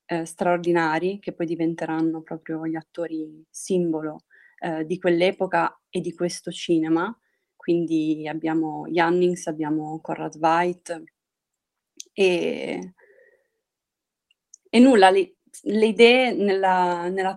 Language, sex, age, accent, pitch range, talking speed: Italian, female, 20-39, native, 170-210 Hz, 100 wpm